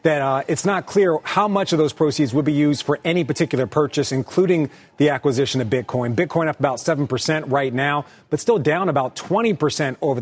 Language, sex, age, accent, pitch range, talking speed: English, male, 40-59, American, 125-170 Hz, 200 wpm